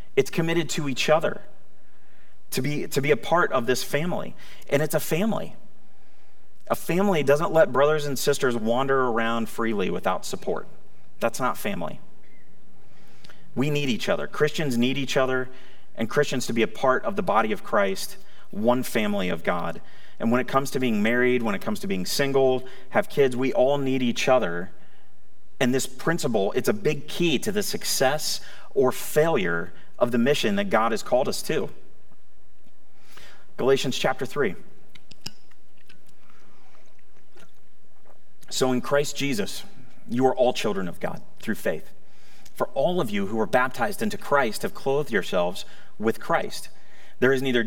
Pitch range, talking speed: 130-205 Hz, 160 wpm